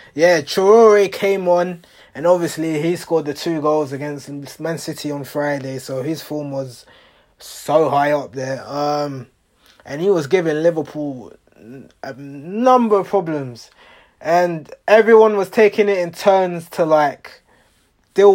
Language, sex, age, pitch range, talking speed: English, male, 20-39, 140-180 Hz, 145 wpm